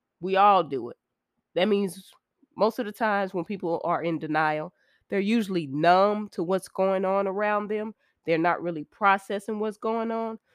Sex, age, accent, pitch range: female, 20-39, American, 170-215 Hz